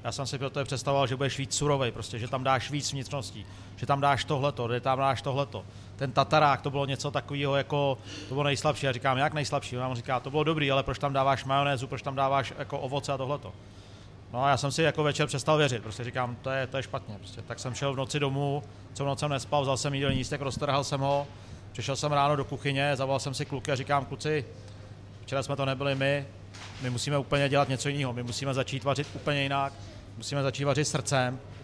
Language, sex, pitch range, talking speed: Czech, male, 120-145 Hz, 230 wpm